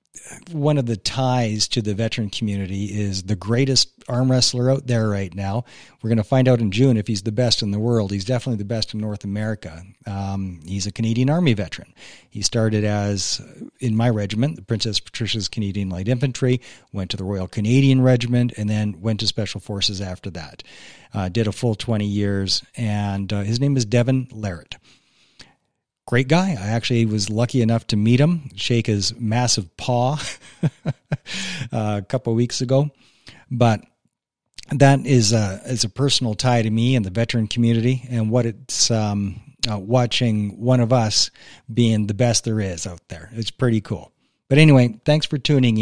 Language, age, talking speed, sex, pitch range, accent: English, 40-59, 185 wpm, male, 105-125 Hz, American